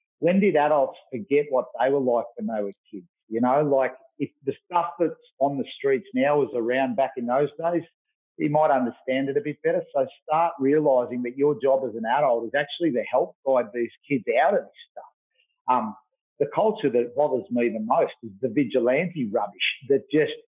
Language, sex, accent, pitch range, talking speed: English, male, Australian, 125-210 Hz, 205 wpm